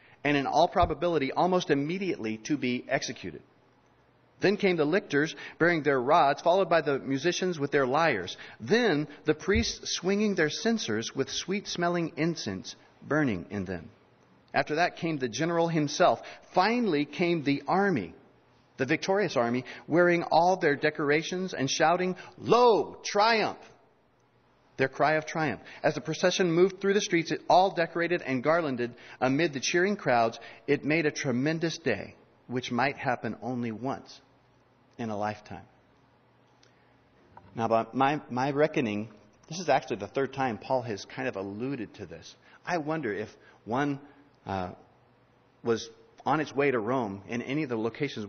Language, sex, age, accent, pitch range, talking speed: English, male, 40-59, American, 120-170 Hz, 150 wpm